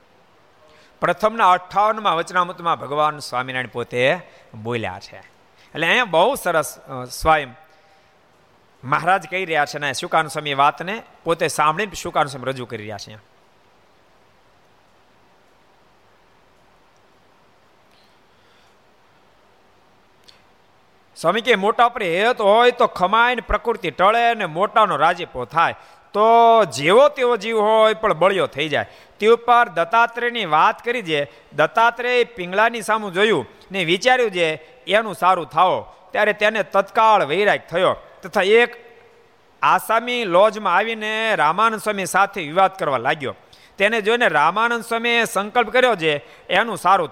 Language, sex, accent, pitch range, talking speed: Gujarati, male, native, 155-220 Hz, 55 wpm